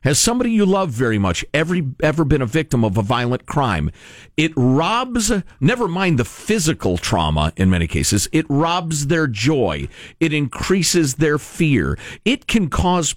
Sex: male